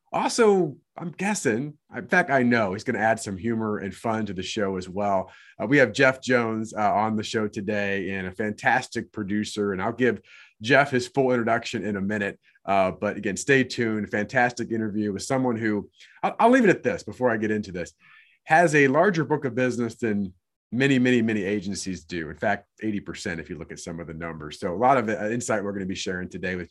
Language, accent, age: English, American, 30-49